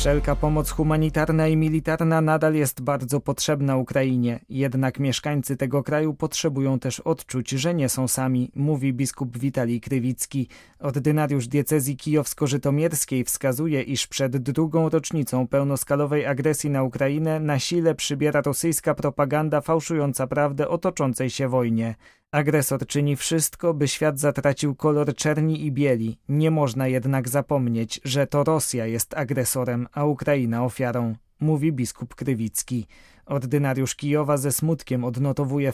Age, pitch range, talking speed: 20-39, 130-155 Hz, 130 wpm